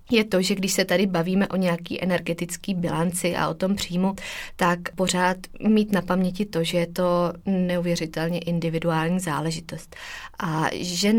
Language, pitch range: Czech, 170-195 Hz